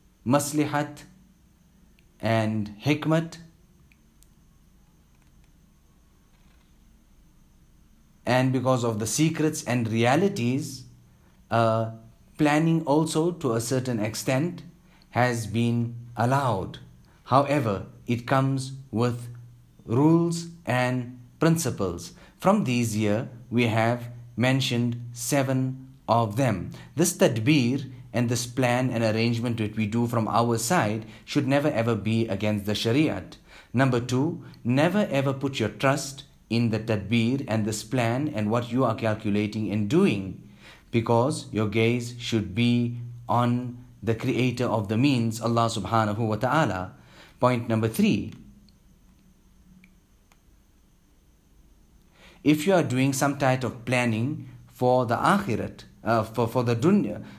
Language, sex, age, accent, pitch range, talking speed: English, male, 40-59, Indian, 110-140 Hz, 115 wpm